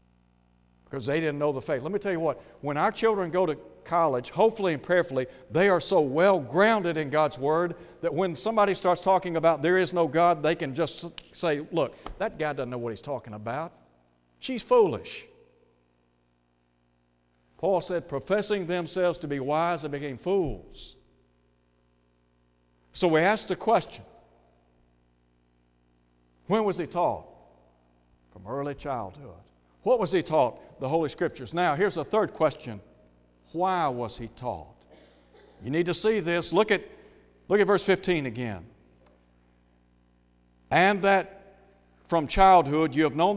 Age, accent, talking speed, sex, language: 60-79, American, 150 wpm, male, English